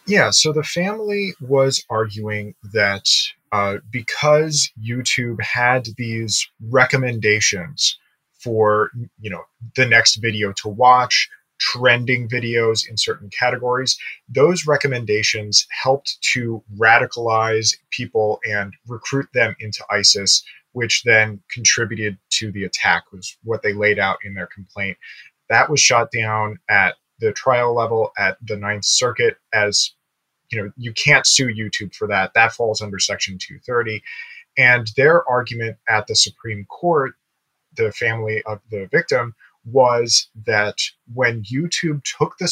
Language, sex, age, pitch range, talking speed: English, male, 30-49, 105-130 Hz, 135 wpm